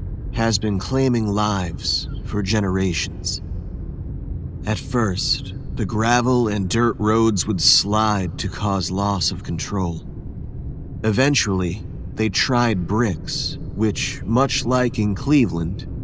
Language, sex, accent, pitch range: English, male, American, 95-115 Hz